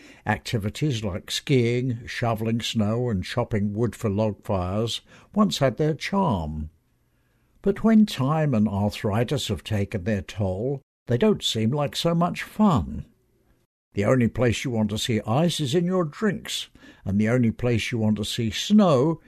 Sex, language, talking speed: male, English, 160 wpm